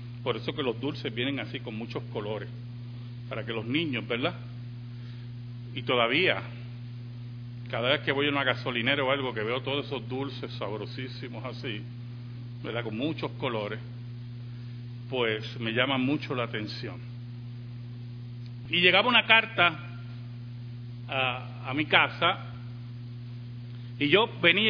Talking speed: 130 wpm